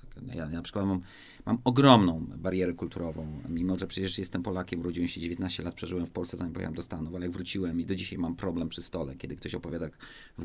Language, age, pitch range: Polish, 30-49, 90-120 Hz